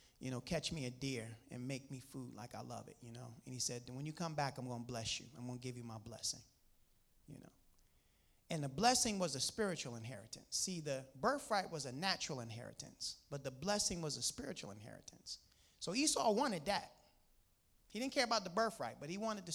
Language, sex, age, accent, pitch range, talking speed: English, male, 30-49, American, 135-205 Hz, 220 wpm